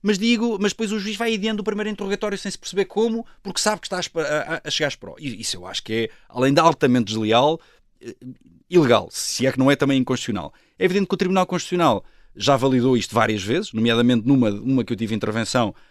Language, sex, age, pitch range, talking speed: Portuguese, male, 20-39, 130-185 Hz, 230 wpm